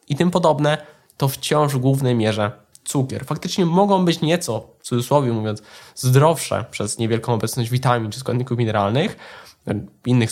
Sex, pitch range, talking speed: male, 120-155 Hz, 145 wpm